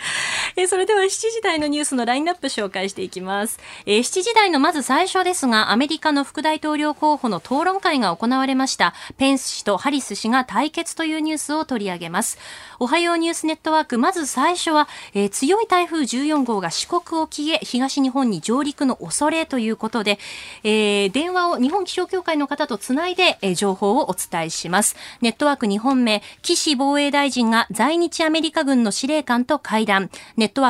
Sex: female